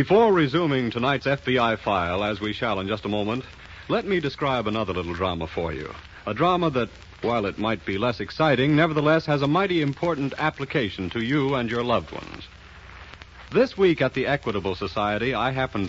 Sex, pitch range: male, 90-150 Hz